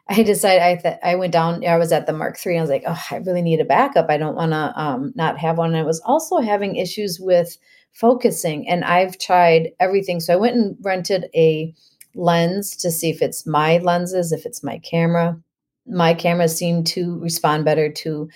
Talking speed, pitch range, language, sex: 215 wpm, 155-180 Hz, English, female